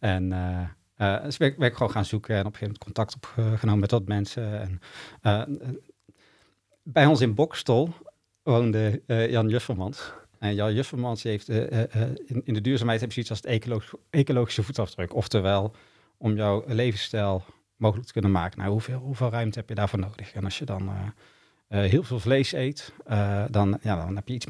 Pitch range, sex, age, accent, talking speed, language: 105-125 Hz, male, 40-59, Dutch, 195 wpm, Dutch